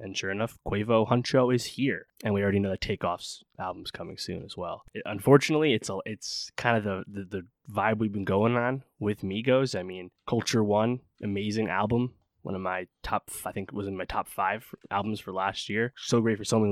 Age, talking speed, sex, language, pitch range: 20-39, 225 wpm, male, English, 95-120 Hz